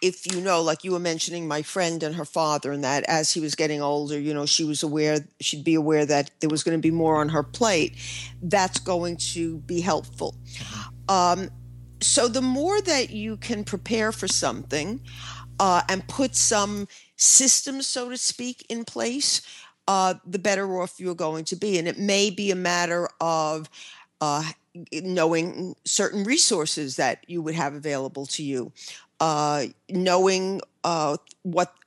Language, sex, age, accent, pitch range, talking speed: English, female, 50-69, American, 155-210 Hz, 175 wpm